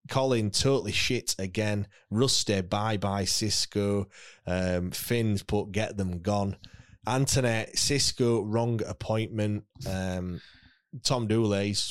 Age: 20-39